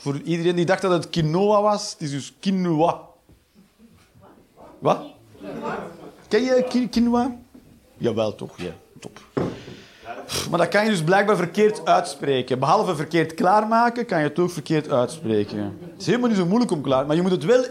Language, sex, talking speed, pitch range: Dutch, male, 170 wpm, 165-245 Hz